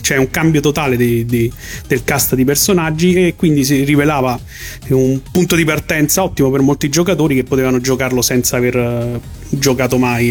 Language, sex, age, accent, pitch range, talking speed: Italian, male, 30-49, native, 125-150 Hz, 170 wpm